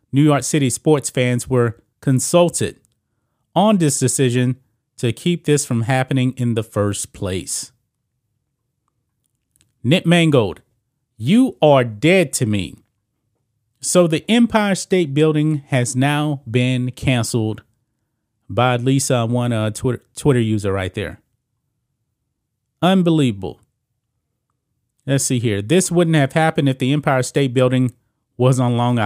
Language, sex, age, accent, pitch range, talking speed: English, male, 30-49, American, 115-135 Hz, 125 wpm